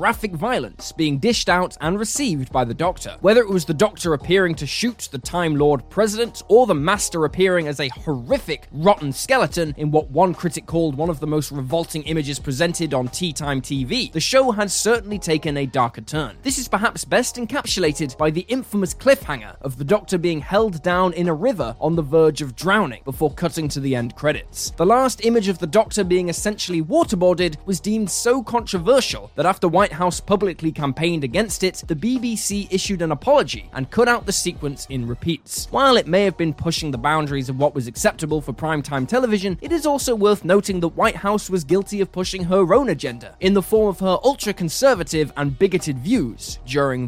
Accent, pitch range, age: British, 150-210 Hz, 10-29